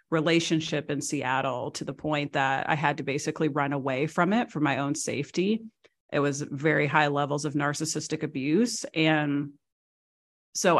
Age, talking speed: 30-49, 160 wpm